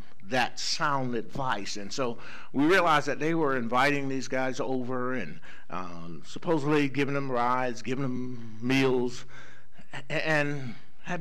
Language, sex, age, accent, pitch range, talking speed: English, male, 60-79, American, 110-155 Hz, 135 wpm